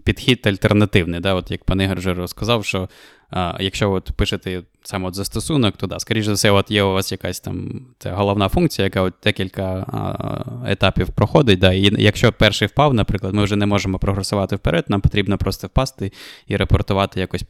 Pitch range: 95-110 Hz